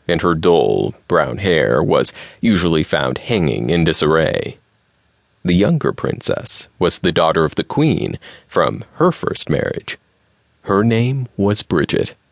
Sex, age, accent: male, 30-49, American